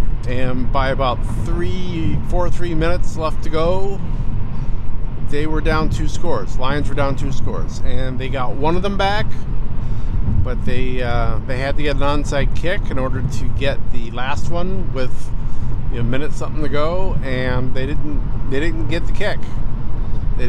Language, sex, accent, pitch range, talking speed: English, male, American, 110-145 Hz, 180 wpm